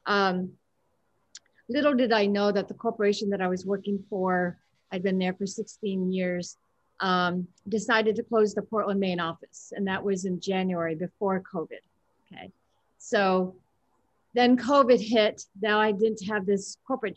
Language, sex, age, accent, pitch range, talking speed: English, female, 40-59, American, 185-220 Hz, 155 wpm